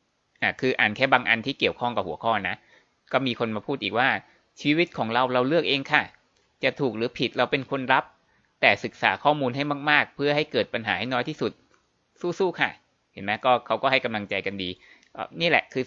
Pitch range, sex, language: 110-135 Hz, male, Thai